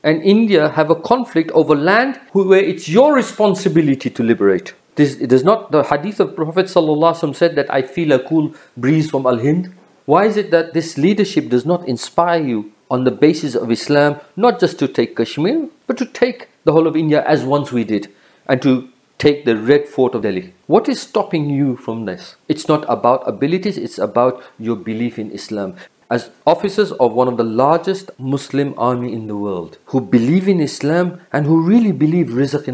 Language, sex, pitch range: Urdu, male, 125-180 Hz